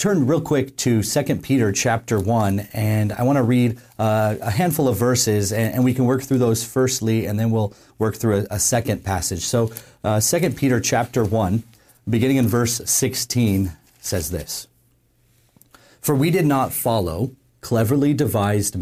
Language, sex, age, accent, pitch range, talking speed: English, male, 40-59, American, 105-125 Hz, 170 wpm